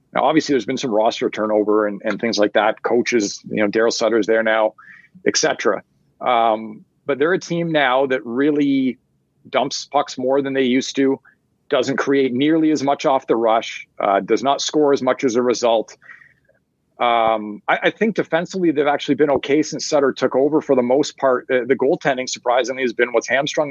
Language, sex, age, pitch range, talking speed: English, male, 40-59, 125-155 Hz, 195 wpm